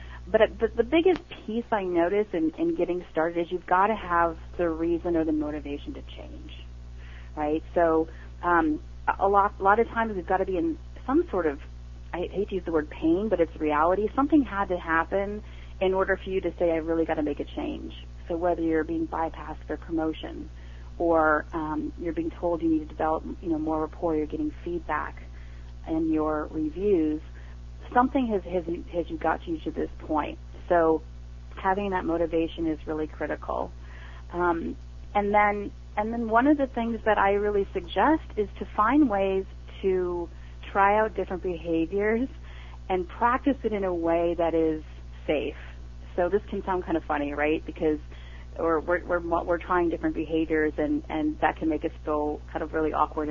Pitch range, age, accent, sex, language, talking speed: 150-195 Hz, 30-49, American, female, English, 190 wpm